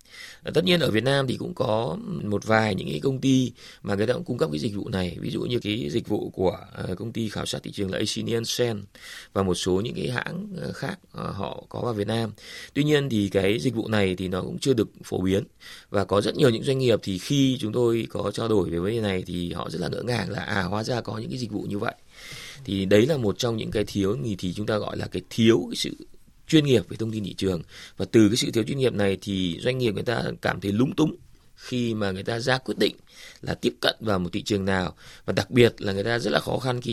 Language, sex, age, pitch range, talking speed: Vietnamese, male, 20-39, 95-125 Hz, 275 wpm